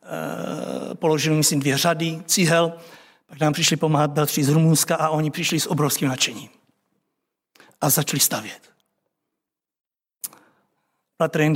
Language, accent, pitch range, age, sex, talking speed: Czech, native, 155-190 Hz, 60-79, male, 115 wpm